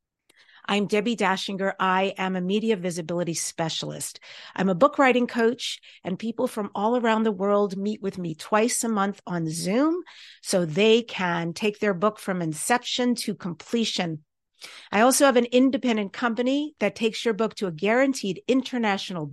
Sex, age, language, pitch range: female, 50-69, English, 190-240 Hz